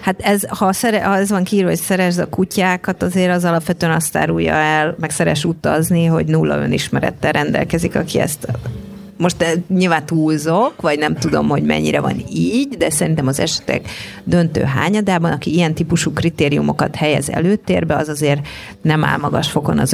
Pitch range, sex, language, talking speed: 150-185 Hz, female, Hungarian, 170 wpm